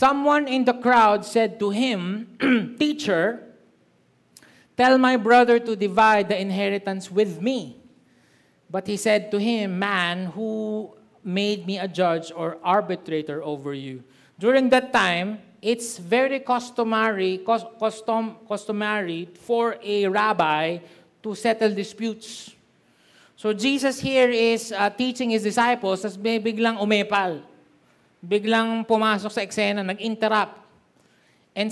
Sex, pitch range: male, 205-255 Hz